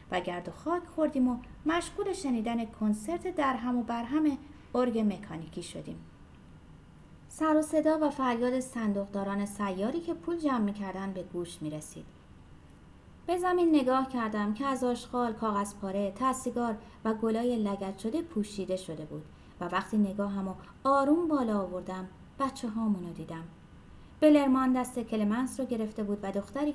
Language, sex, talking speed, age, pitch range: Persian, female, 145 wpm, 30-49, 190-260 Hz